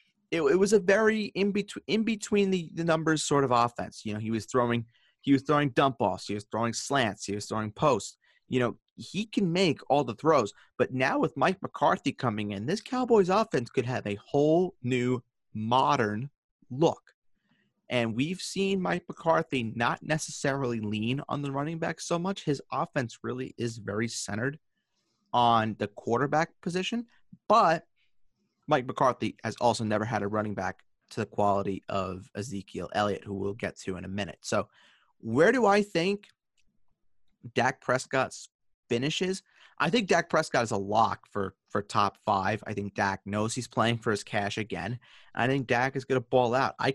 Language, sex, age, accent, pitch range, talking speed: English, male, 30-49, American, 105-160 Hz, 185 wpm